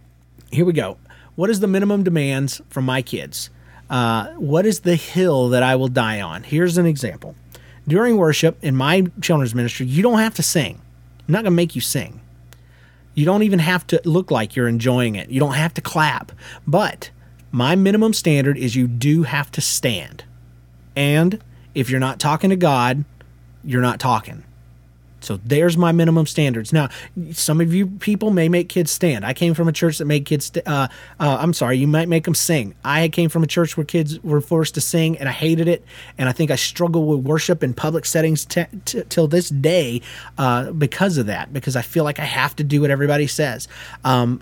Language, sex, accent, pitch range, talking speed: English, male, American, 125-170 Hz, 205 wpm